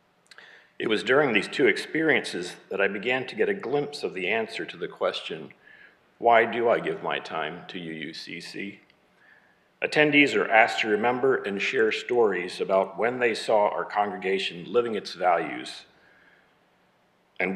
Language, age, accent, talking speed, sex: English, 50-69, American, 155 wpm, male